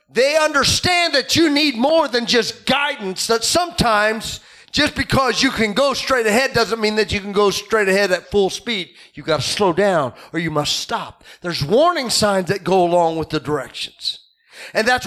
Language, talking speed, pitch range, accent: English, 195 wpm, 185-260 Hz, American